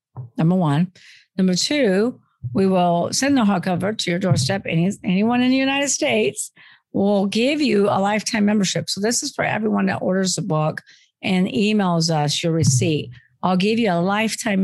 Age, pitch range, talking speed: 50-69, 165-210 Hz, 175 wpm